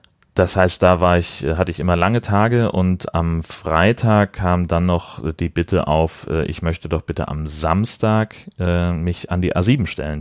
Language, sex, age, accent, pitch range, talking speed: German, male, 30-49, German, 80-95 Hz, 175 wpm